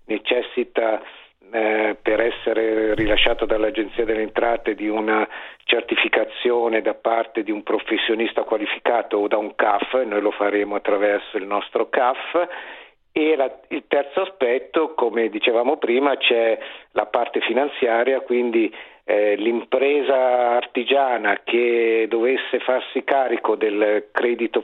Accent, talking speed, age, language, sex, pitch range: native, 120 wpm, 50-69, Italian, male, 110-125 Hz